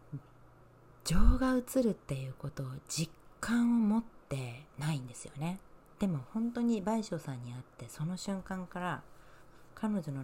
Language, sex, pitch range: Japanese, female, 135-155 Hz